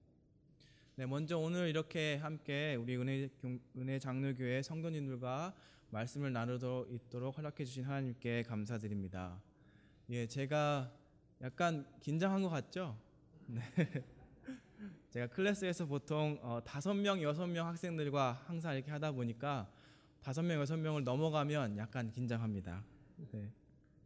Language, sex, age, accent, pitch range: Korean, male, 20-39, native, 125-170 Hz